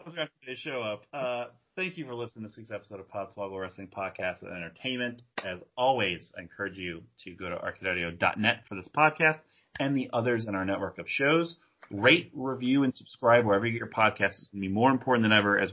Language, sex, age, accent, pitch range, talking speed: English, male, 30-49, American, 100-130 Hz, 210 wpm